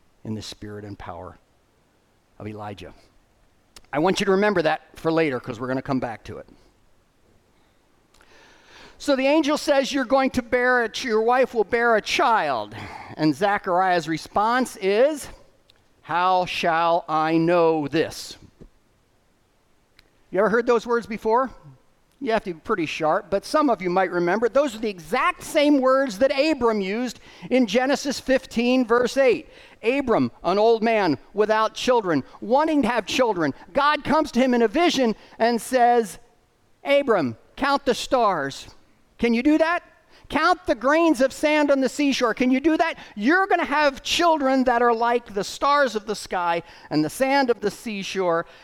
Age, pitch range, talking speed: 50-69, 170-270 Hz, 170 wpm